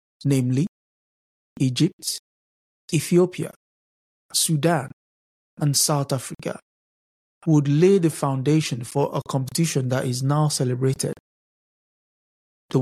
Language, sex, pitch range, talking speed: English, male, 130-165 Hz, 90 wpm